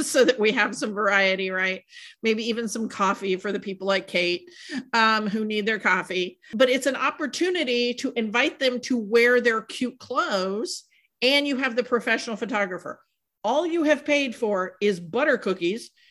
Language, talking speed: English, 175 wpm